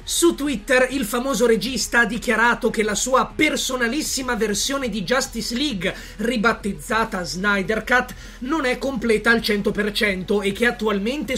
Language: Italian